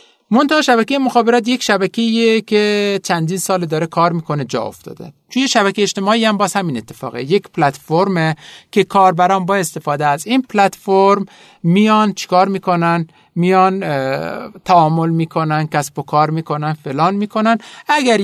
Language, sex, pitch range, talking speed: Persian, male, 145-205 Hz, 145 wpm